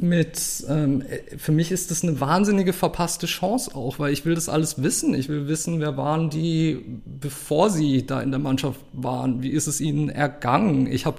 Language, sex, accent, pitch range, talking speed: German, male, German, 140-170 Hz, 200 wpm